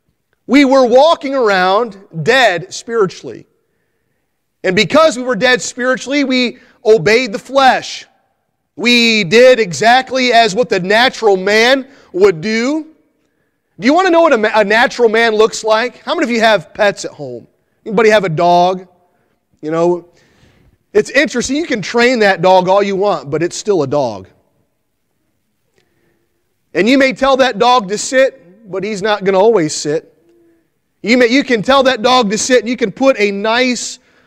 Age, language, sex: 30-49, English, male